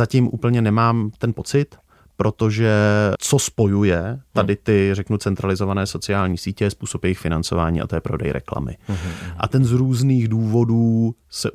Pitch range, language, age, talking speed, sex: 95-115 Hz, Czech, 30-49, 145 wpm, male